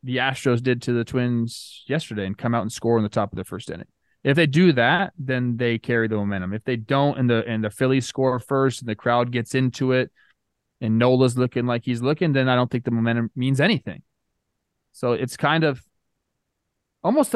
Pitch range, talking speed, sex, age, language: 115-140 Hz, 220 wpm, male, 20-39, English